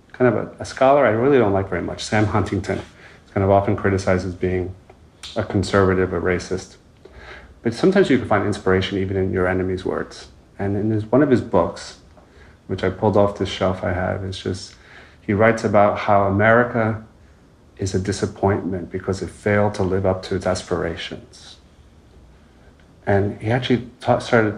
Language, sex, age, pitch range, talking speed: English, male, 30-49, 90-105 Hz, 180 wpm